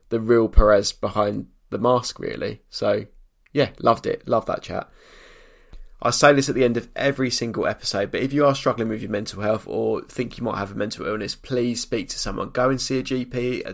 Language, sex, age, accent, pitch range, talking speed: English, male, 20-39, British, 110-130 Hz, 225 wpm